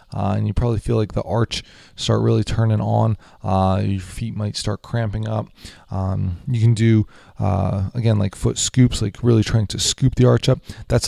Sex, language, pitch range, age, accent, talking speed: male, English, 95-115 Hz, 20-39, American, 200 wpm